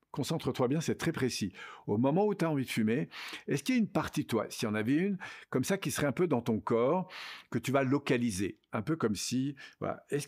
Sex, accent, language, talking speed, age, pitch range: male, French, French, 265 wpm, 50-69, 110-145 Hz